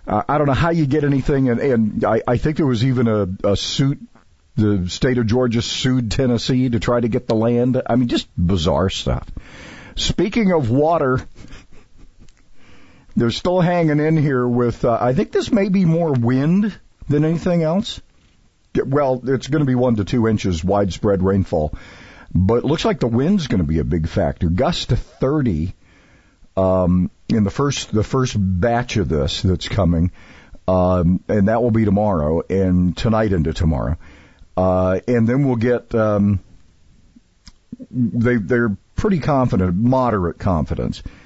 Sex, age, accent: male, 50-69, American